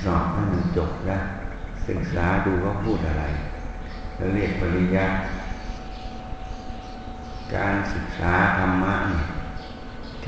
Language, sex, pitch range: Thai, male, 85-110 Hz